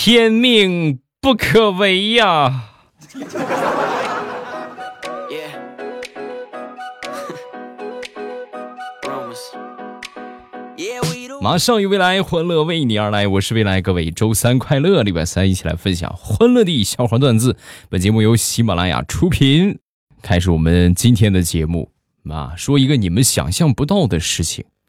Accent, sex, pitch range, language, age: native, male, 90-135 Hz, Chinese, 20-39